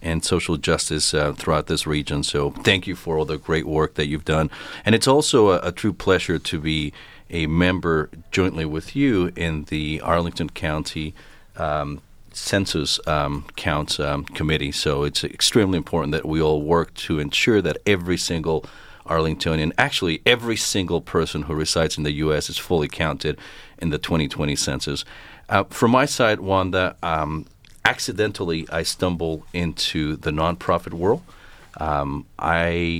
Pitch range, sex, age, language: 75-85 Hz, male, 40-59, English